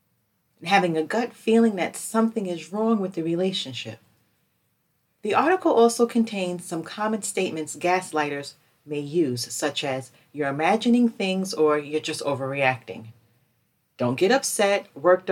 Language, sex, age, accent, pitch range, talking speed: English, female, 40-59, American, 145-200 Hz, 135 wpm